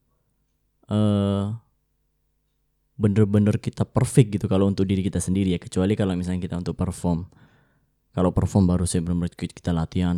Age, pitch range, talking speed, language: 20-39, 90-110 Hz, 135 wpm, Indonesian